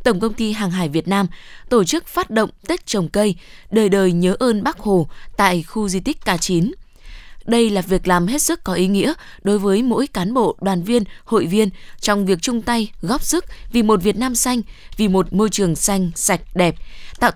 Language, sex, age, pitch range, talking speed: Vietnamese, female, 10-29, 185-230 Hz, 220 wpm